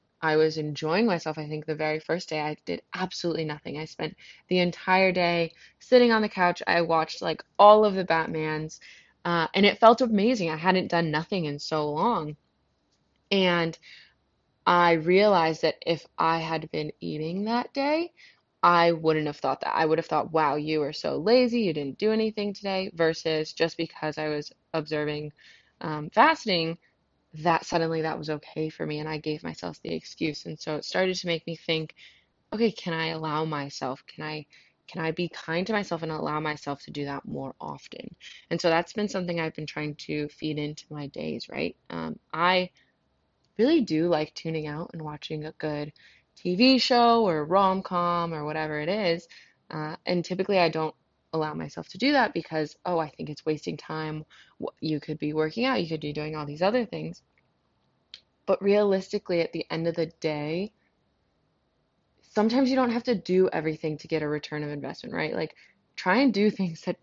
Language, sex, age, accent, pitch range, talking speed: English, female, 20-39, American, 155-185 Hz, 190 wpm